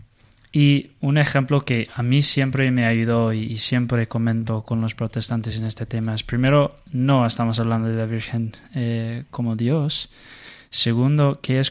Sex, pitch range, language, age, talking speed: male, 115-130 Hz, Spanish, 20-39, 165 wpm